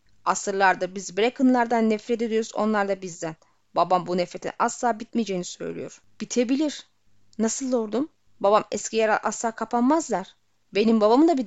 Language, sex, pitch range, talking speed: Turkish, female, 200-265 Hz, 135 wpm